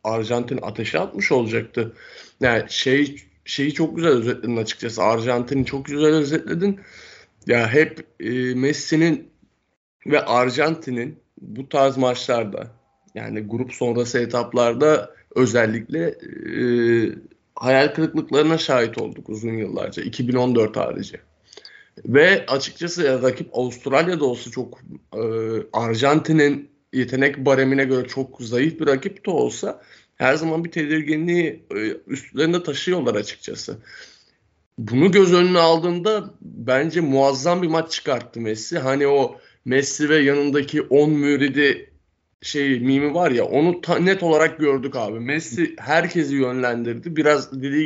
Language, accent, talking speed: Turkish, native, 120 wpm